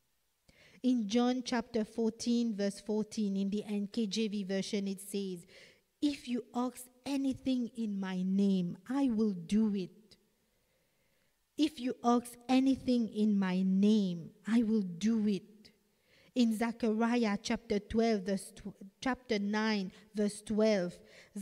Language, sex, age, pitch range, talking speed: English, female, 50-69, 195-245 Hz, 115 wpm